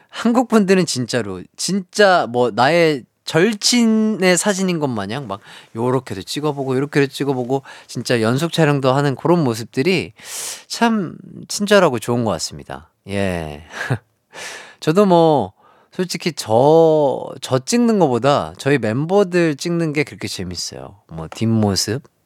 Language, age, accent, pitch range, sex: Korean, 30-49, native, 110-185 Hz, male